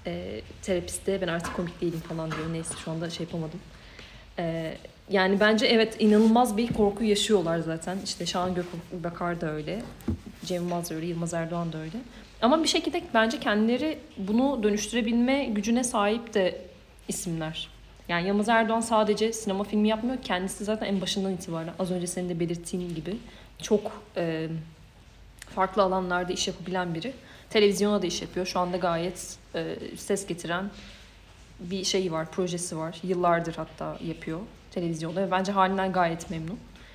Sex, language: female, Turkish